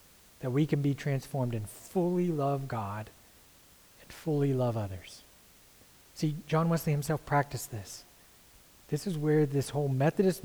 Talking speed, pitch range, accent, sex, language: 145 wpm, 140-200 Hz, American, male, English